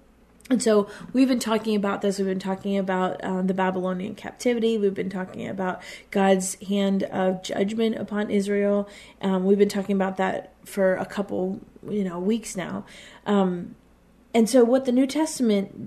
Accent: American